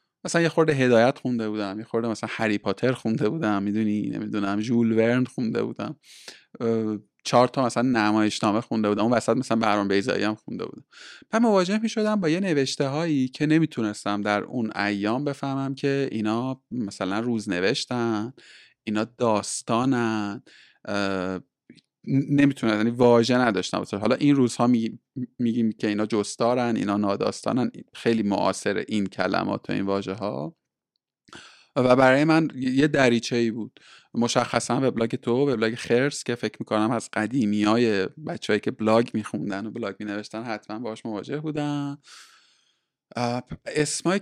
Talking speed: 140 wpm